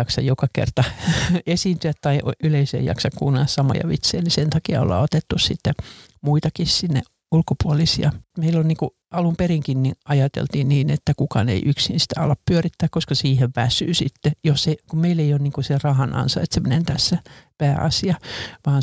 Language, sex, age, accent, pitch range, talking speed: Finnish, male, 60-79, native, 140-160 Hz, 170 wpm